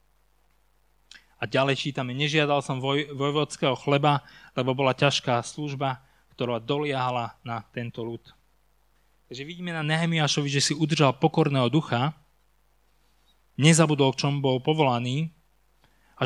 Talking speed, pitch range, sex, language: 120 wpm, 125-150 Hz, male, Slovak